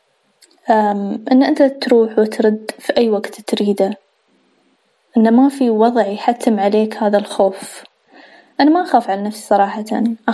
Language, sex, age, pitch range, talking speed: English, female, 20-39, 210-250 Hz, 130 wpm